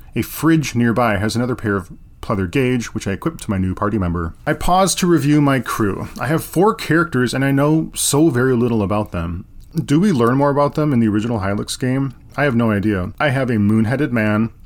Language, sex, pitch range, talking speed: English, male, 105-145 Hz, 225 wpm